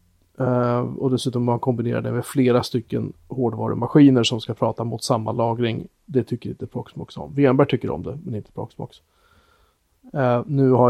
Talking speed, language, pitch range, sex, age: 175 wpm, Swedish, 115-135 Hz, male, 30-49